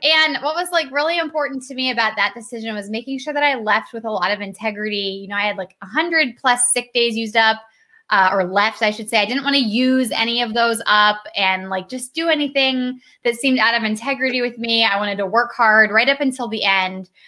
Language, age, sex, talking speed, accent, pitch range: English, 10-29, female, 245 wpm, American, 205-255 Hz